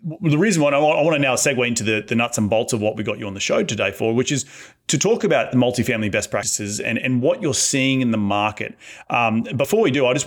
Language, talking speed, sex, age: English, 280 wpm, male, 30-49